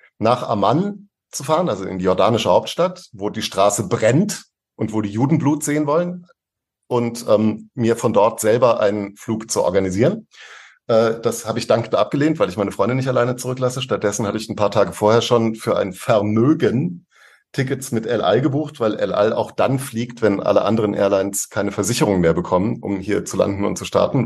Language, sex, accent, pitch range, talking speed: German, male, German, 105-125 Hz, 200 wpm